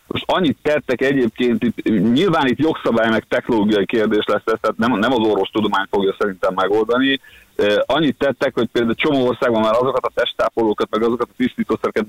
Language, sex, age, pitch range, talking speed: Hungarian, male, 30-49, 110-170 Hz, 165 wpm